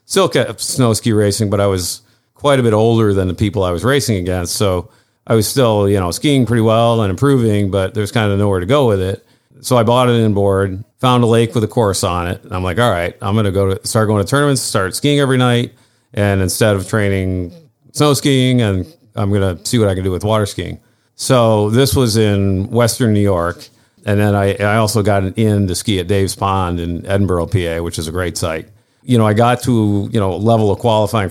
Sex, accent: male, American